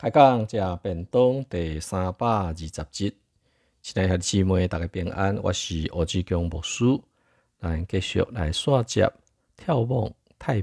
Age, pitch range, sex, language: 50-69, 80-110 Hz, male, Chinese